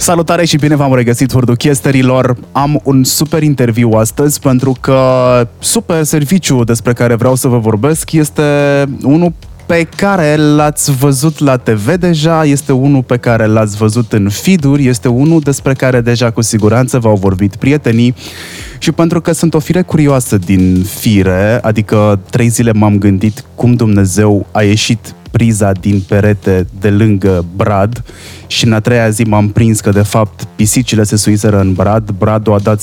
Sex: male